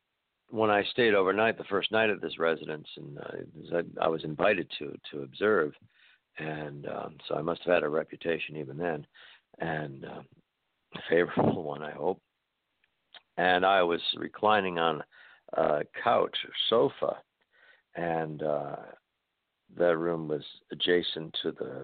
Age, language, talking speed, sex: 60-79, English, 145 wpm, male